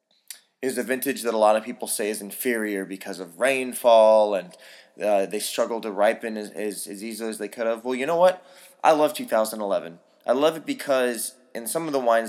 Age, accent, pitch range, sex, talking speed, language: 20-39, American, 110-140 Hz, male, 215 wpm, English